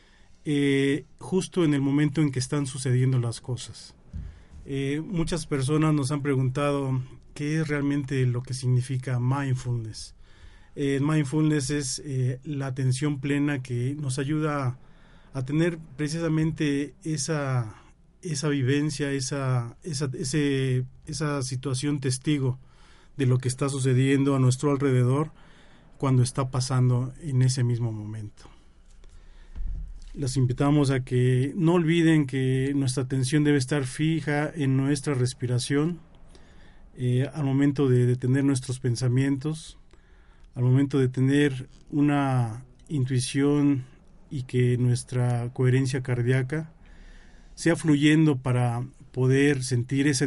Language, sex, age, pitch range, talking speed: Spanish, male, 40-59, 125-145 Hz, 120 wpm